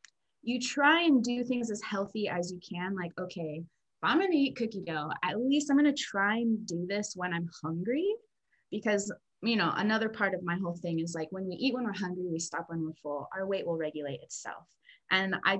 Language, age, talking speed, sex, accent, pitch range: English, 20-39, 225 wpm, female, American, 170-235 Hz